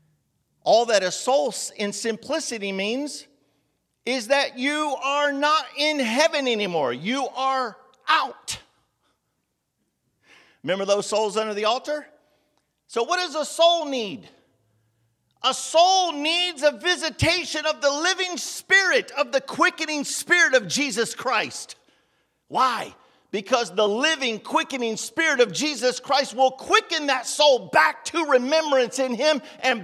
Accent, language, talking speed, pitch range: American, English, 130 wpm, 200-290 Hz